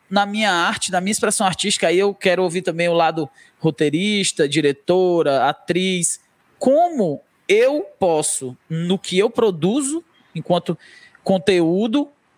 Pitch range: 170-245 Hz